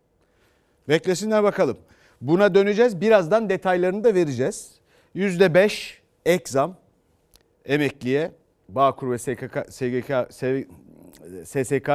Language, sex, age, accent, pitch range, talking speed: Turkish, male, 40-59, native, 130-185 Hz, 80 wpm